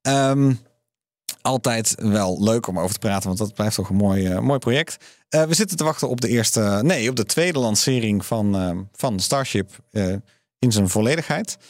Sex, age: male, 40-59